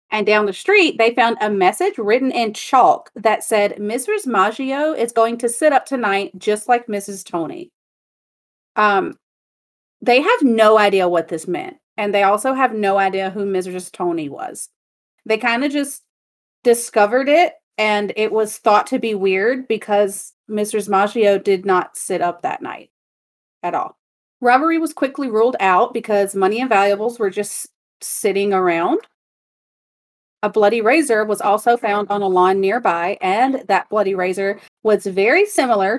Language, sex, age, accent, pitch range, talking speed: English, female, 30-49, American, 195-255 Hz, 160 wpm